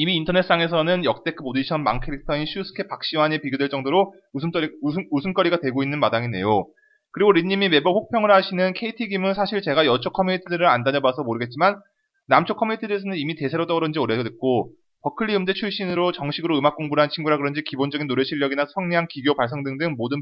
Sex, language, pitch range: male, Korean, 140-195 Hz